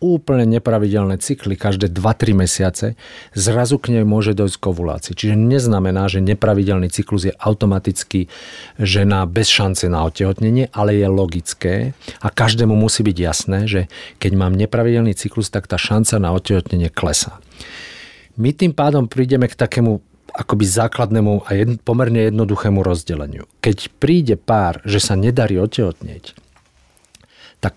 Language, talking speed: Slovak, 140 wpm